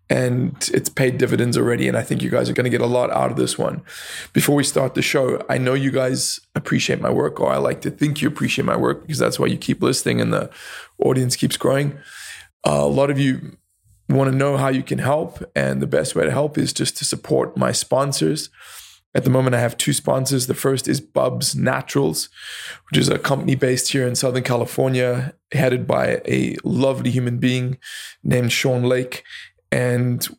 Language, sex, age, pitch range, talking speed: English, male, 20-39, 120-135 Hz, 205 wpm